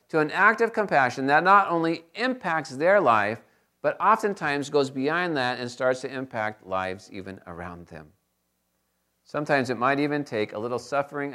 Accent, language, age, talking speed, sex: American, English, 40-59, 170 wpm, male